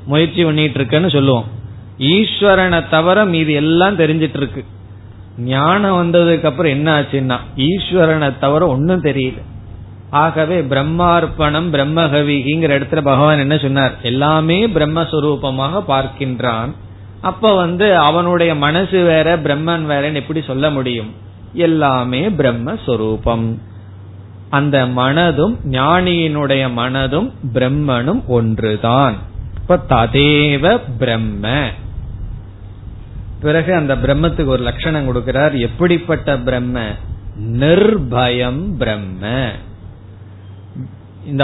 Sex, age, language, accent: male, 30-49, Tamil, native